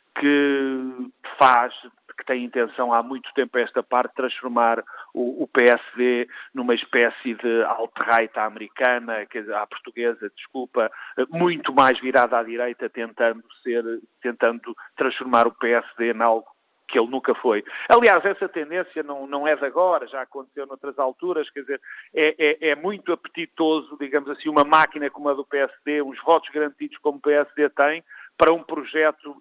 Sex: male